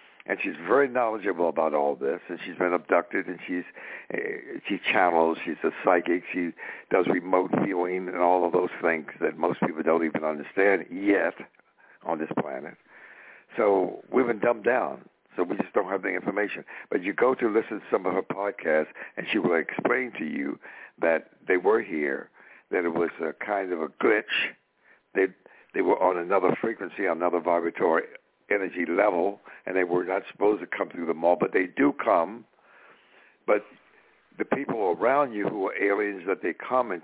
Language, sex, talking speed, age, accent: English, male, 185 wpm, 60-79, American